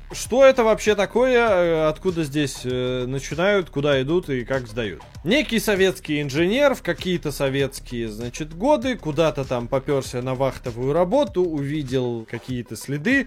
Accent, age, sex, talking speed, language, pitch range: native, 20-39, male, 130 wpm, Russian, 130-195 Hz